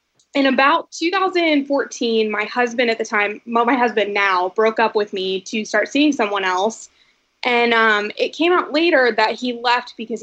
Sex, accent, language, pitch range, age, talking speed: female, American, English, 205-245 Hz, 20-39, 180 wpm